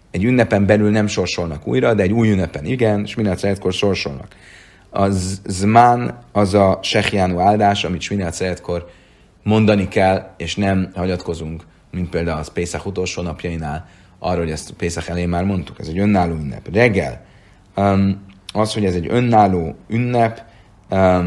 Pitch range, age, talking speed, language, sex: 85-105 Hz, 40-59, 145 wpm, Hungarian, male